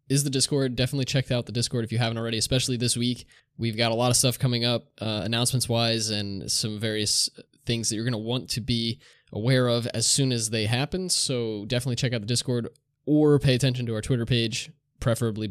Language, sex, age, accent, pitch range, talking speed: English, male, 20-39, American, 110-135 Hz, 225 wpm